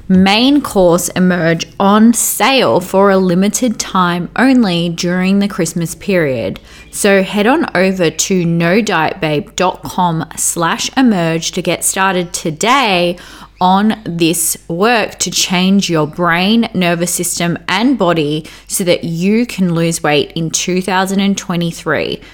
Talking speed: 120 wpm